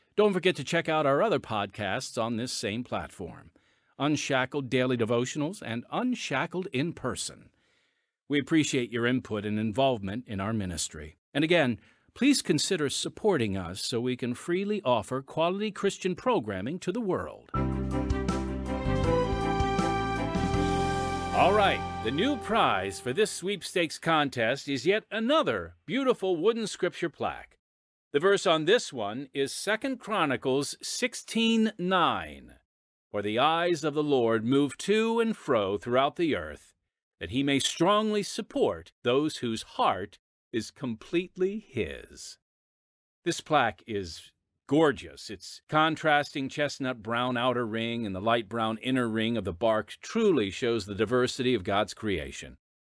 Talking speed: 135 wpm